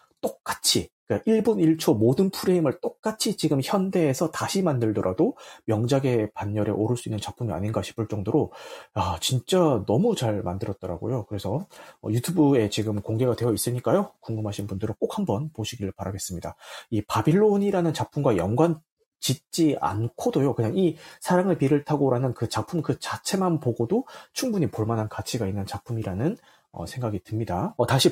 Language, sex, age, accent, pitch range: Korean, male, 30-49, native, 110-175 Hz